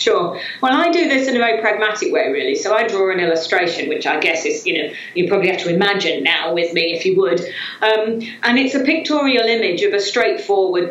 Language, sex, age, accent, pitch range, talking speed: English, female, 40-59, British, 170-235 Hz, 230 wpm